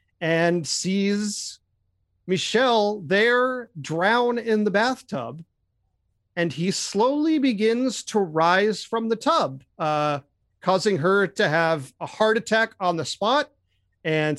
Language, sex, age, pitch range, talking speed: English, male, 40-59, 160-225 Hz, 120 wpm